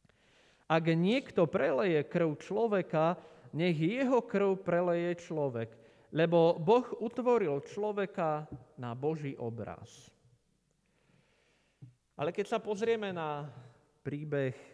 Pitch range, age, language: 130-185 Hz, 40-59, Slovak